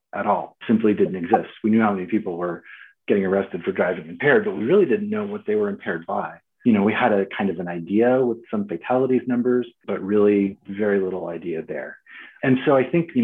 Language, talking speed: English, 225 wpm